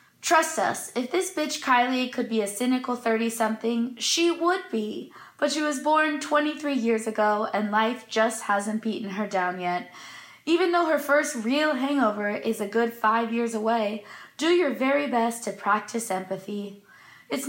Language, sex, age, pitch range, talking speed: English, female, 20-39, 215-295 Hz, 170 wpm